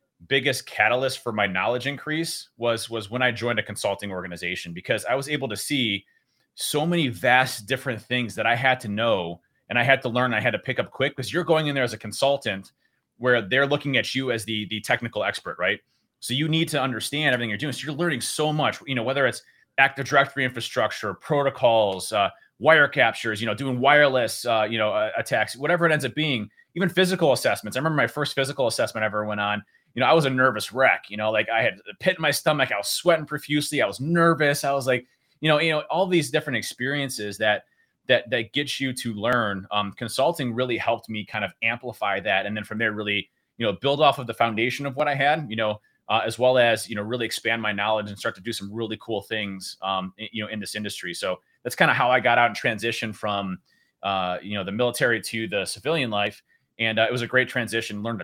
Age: 30-49